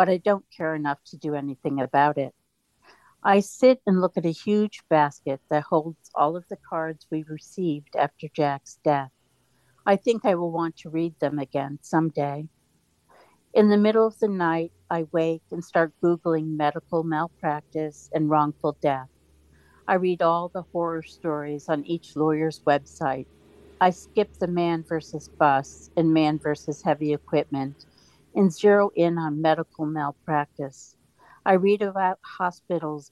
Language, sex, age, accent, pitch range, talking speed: English, female, 50-69, American, 145-175 Hz, 155 wpm